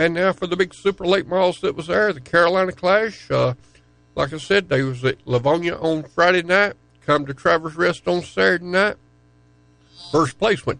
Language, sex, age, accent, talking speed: English, male, 60-79, American, 195 wpm